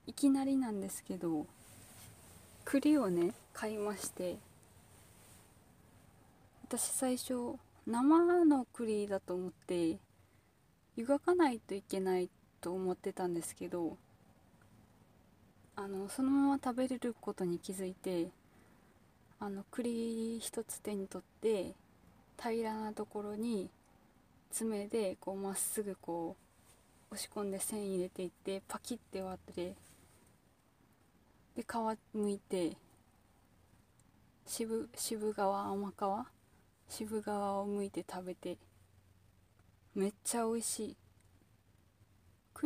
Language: Japanese